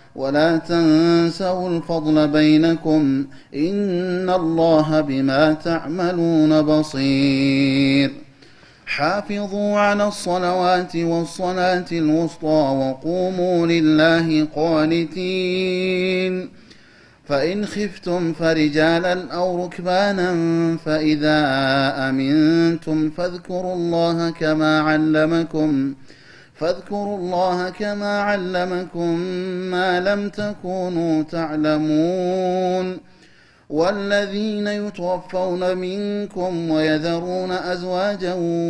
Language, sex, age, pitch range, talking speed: Amharic, male, 30-49, 155-180 Hz, 65 wpm